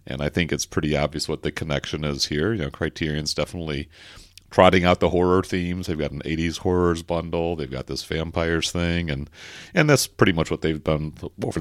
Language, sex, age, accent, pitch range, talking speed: English, male, 40-59, American, 80-95 Hz, 205 wpm